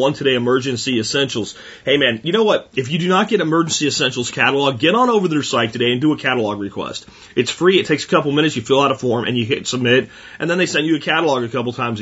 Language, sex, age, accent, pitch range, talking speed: English, male, 30-49, American, 120-150 Hz, 275 wpm